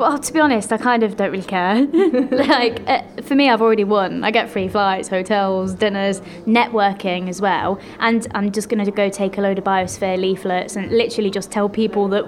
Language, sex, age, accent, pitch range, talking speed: English, female, 10-29, British, 185-225 Hz, 210 wpm